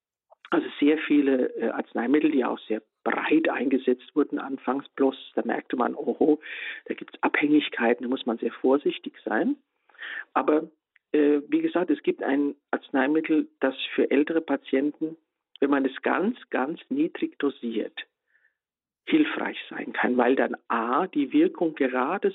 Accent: German